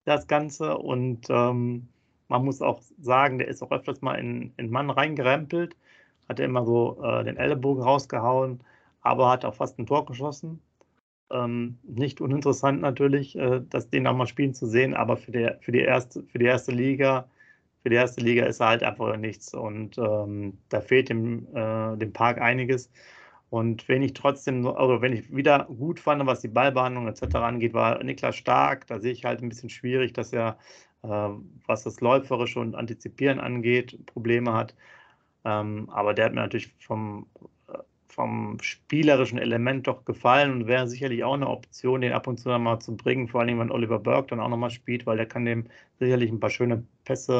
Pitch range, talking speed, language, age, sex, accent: 115-130 Hz, 190 wpm, German, 40-59, male, German